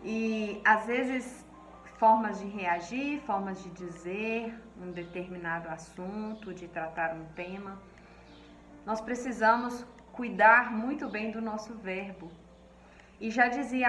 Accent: Brazilian